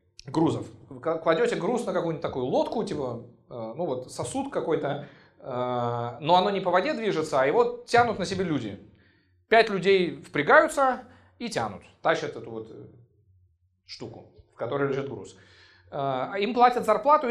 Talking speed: 155 wpm